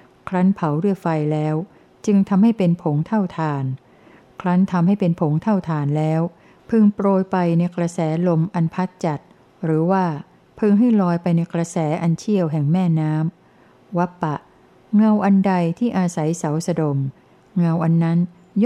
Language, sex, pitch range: Thai, female, 160-190 Hz